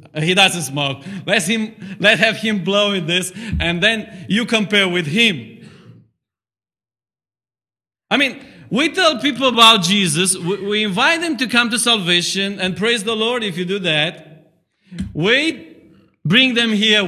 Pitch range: 120-200 Hz